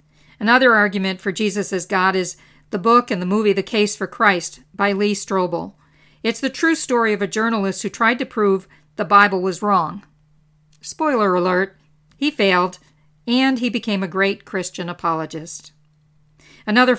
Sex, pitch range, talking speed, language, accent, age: female, 170-230 Hz, 165 wpm, English, American, 50-69